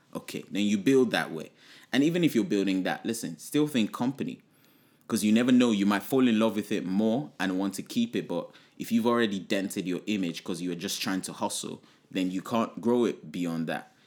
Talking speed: 230 wpm